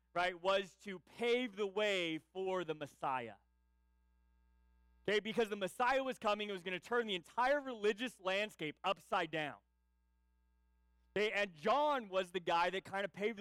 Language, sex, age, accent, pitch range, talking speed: English, male, 30-49, American, 155-210 Hz, 160 wpm